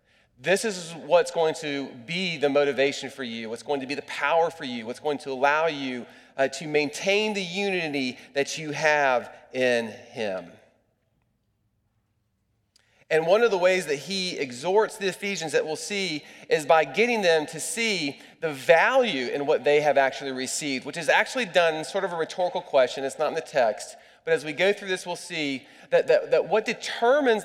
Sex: male